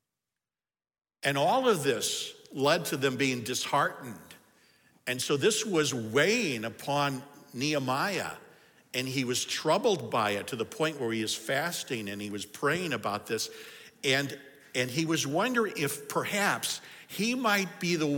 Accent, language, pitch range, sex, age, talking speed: American, English, 135-200 Hz, male, 60-79, 150 wpm